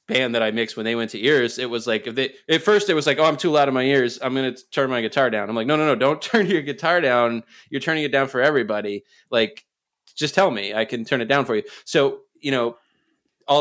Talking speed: 280 wpm